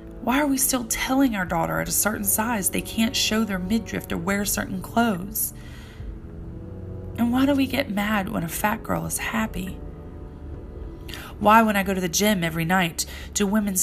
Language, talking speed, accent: English, 185 wpm, American